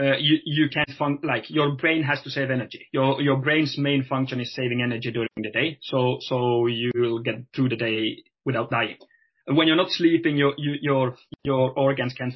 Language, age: English, 30-49